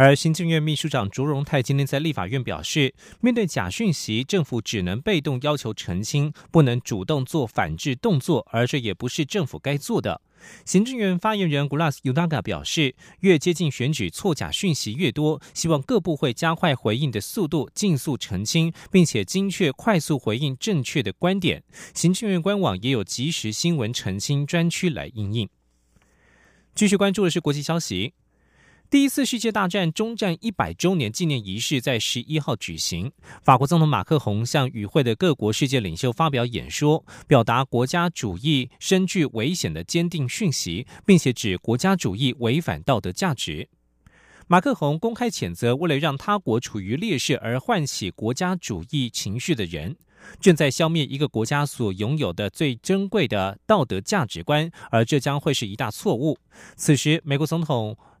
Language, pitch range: German, 120-170 Hz